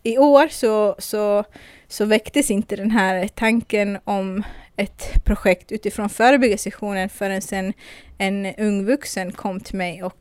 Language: Swedish